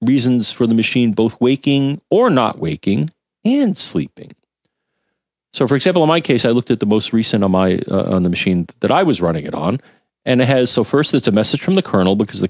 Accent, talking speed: American, 230 wpm